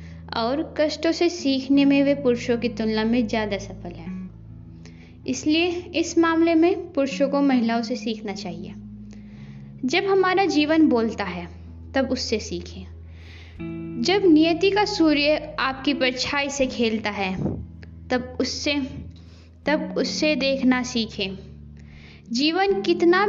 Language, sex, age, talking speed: Hindi, female, 20-39, 120 wpm